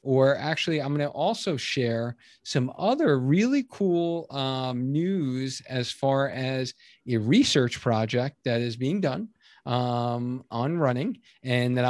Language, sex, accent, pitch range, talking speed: English, male, American, 125-165 Hz, 140 wpm